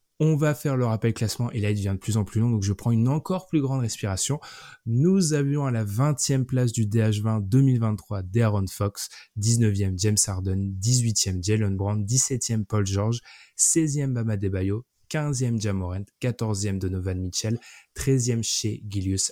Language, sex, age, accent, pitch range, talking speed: French, male, 20-39, French, 105-135 Hz, 170 wpm